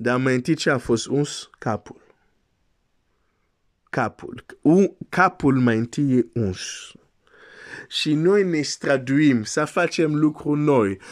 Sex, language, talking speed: male, Romanian, 125 wpm